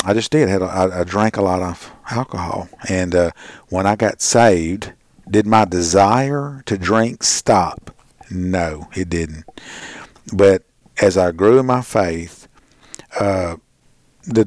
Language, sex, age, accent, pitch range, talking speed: English, male, 50-69, American, 95-115 Hz, 140 wpm